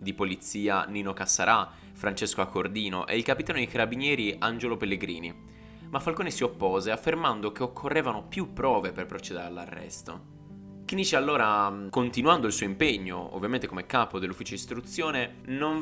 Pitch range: 95-130 Hz